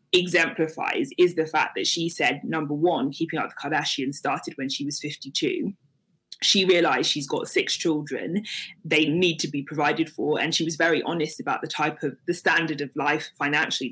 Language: English